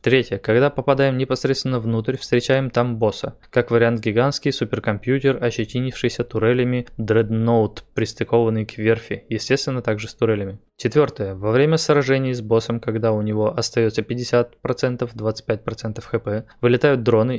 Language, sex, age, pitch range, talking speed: Russian, male, 20-39, 110-125 Hz, 125 wpm